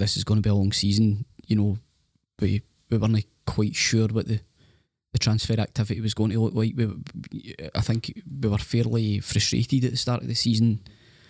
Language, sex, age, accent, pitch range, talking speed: English, male, 10-29, British, 100-115 Hz, 200 wpm